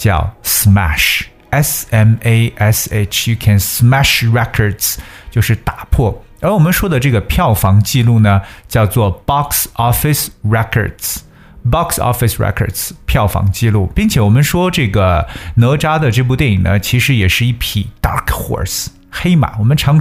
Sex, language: male, Chinese